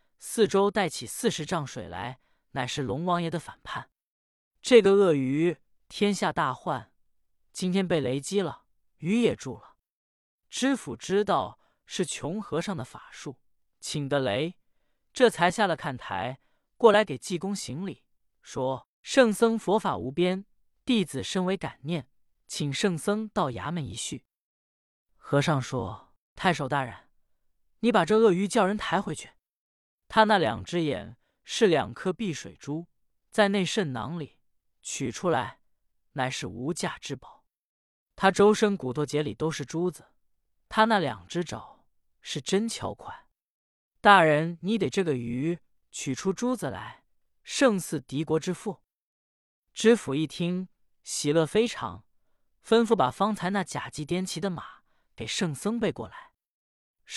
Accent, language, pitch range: native, Chinese, 140-205 Hz